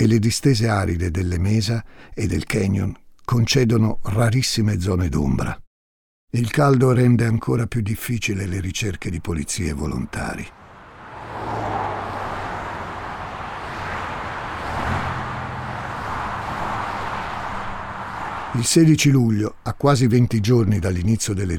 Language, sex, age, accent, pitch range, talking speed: Italian, male, 60-79, native, 85-115 Hz, 90 wpm